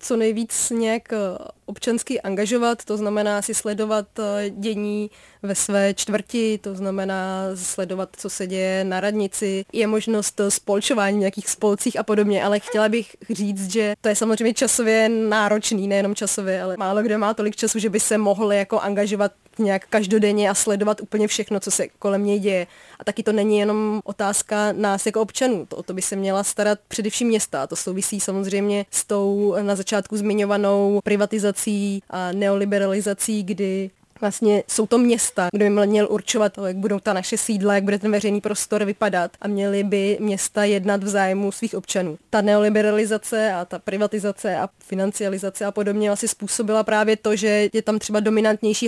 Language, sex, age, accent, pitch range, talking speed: Czech, female, 20-39, native, 200-215 Hz, 170 wpm